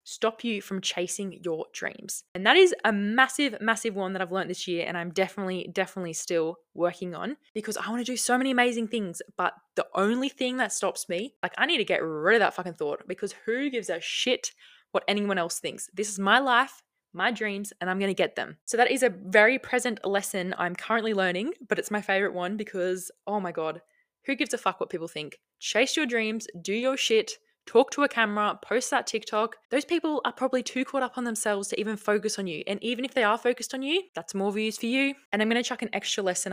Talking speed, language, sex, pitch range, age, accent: 235 wpm, English, female, 185-245 Hz, 20-39, Australian